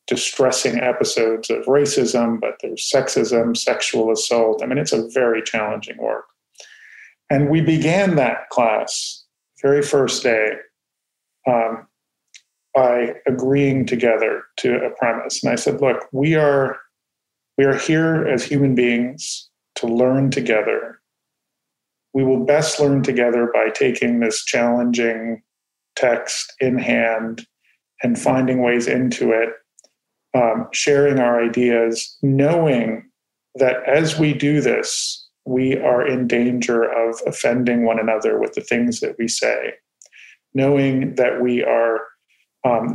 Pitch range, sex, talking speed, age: 120-145 Hz, male, 125 wpm, 40-59